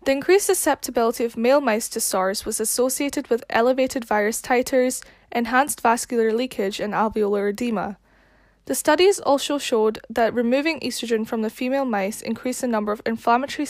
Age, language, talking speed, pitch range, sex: 10-29, English, 160 wpm, 215-265 Hz, female